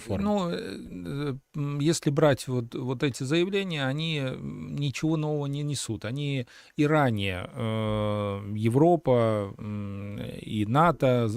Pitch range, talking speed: 110-140 Hz, 105 wpm